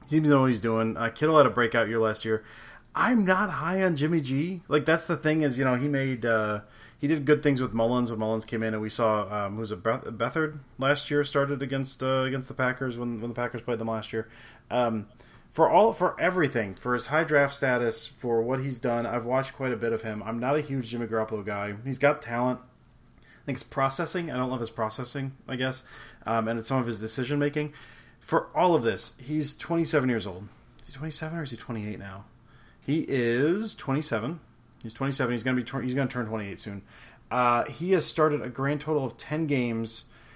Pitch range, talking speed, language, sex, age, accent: 115-140 Hz, 225 wpm, English, male, 30-49, American